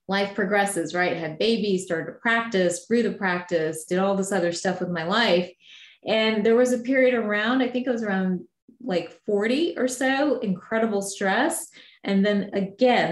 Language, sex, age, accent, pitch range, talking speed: English, female, 30-49, American, 175-230 Hz, 180 wpm